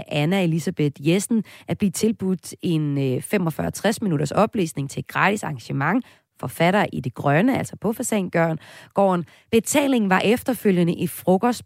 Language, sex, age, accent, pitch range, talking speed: Danish, female, 30-49, native, 150-205 Hz, 130 wpm